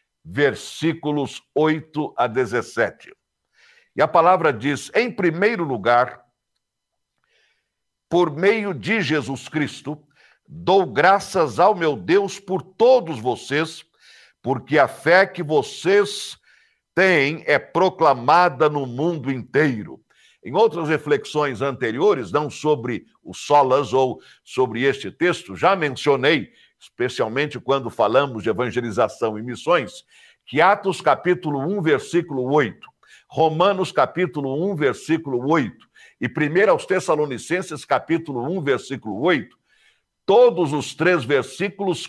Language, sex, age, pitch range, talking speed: Portuguese, male, 60-79, 140-185 Hz, 110 wpm